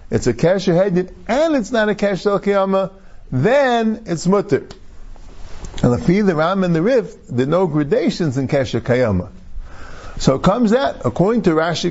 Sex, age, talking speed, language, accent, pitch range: male, 50-69, 175 wpm, English, American, 135-195 Hz